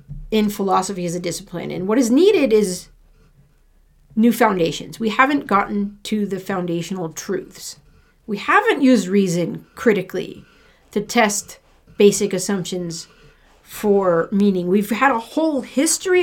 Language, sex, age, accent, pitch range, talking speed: English, female, 40-59, American, 180-240 Hz, 130 wpm